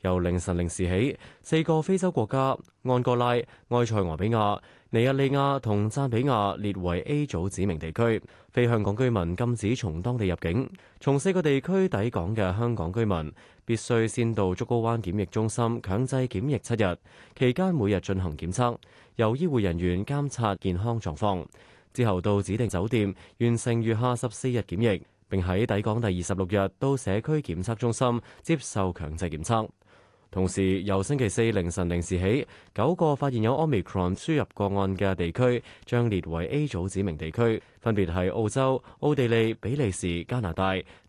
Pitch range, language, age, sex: 95-125 Hz, Chinese, 20-39, male